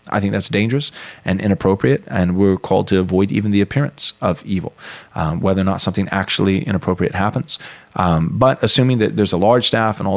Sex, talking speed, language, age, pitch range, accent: male, 200 wpm, English, 30-49, 95-105 Hz, American